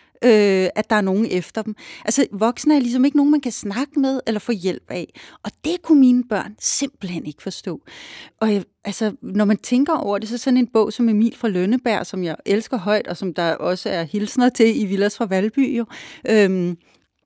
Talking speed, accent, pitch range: 220 wpm, native, 200-255 Hz